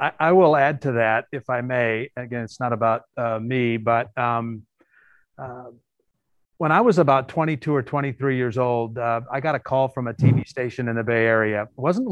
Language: English